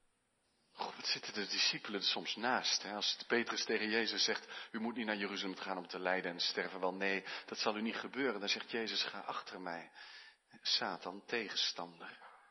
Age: 40-59